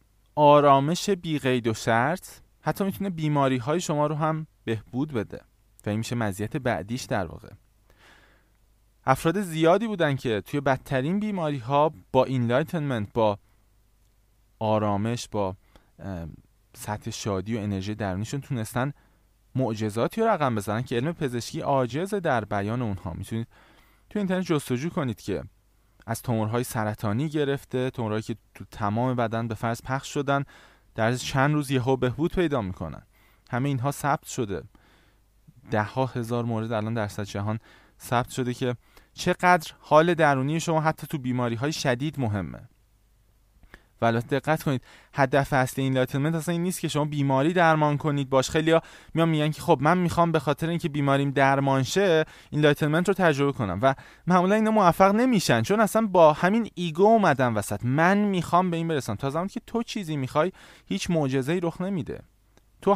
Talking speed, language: 155 wpm, Persian